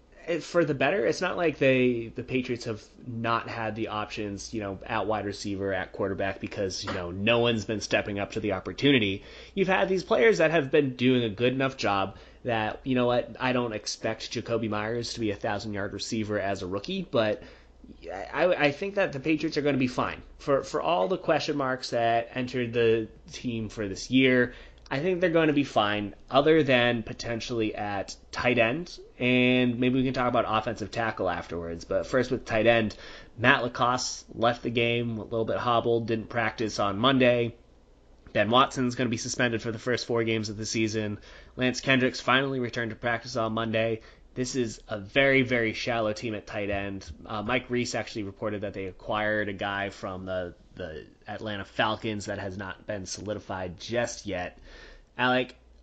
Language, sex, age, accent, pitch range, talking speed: English, male, 30-49, American, 105-125 Hz, 195 wpm